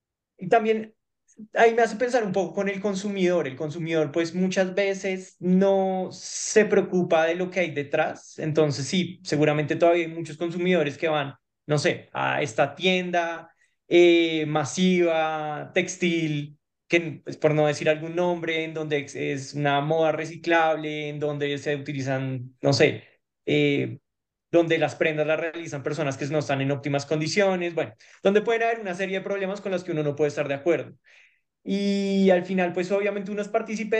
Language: Spanish